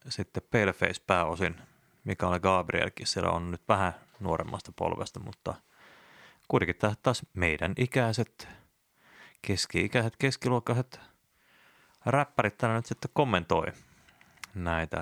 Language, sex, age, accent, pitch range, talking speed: Finnish, male, 30-49, native, 90-120 Hz, 95 wpm